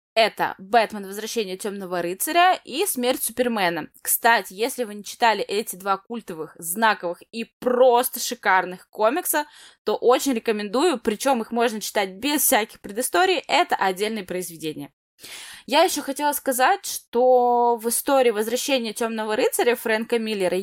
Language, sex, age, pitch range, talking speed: Russian, female, 20-39, 200-265 Hz, 135 wpm